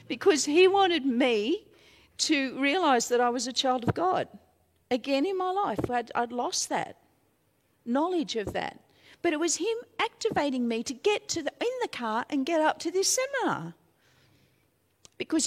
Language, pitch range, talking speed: English, 210-355 Hz, 170 wpm